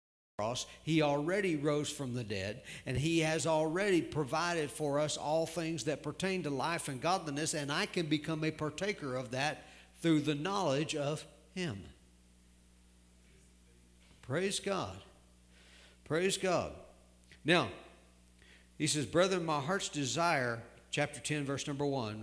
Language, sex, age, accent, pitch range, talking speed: English, male, 60-79, American, 100-160 Hz, 135 wpm